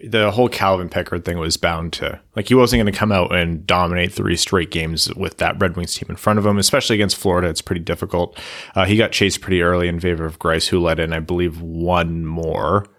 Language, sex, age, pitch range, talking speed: English, male, 30-49, 85-100 Hz, 240 wpm